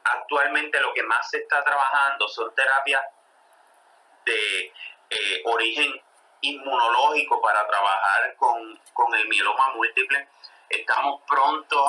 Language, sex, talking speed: Spanish, male, 110 wpm